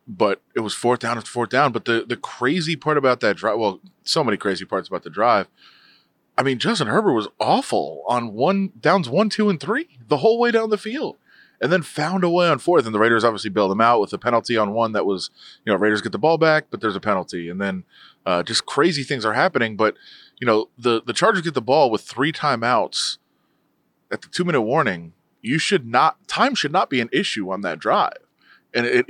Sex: male